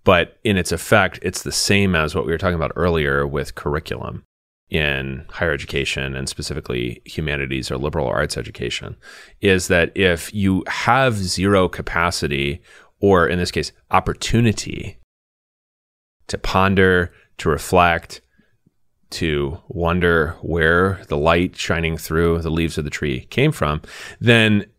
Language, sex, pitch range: English, male, 80-100 Hz